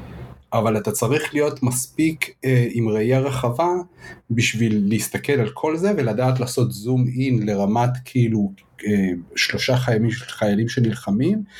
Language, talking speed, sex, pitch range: Hebrew, 130 wpm, male, 105-130 Hz